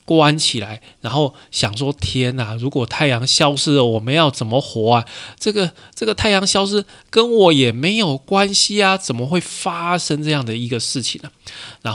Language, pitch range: Chinese, 115-145 Hz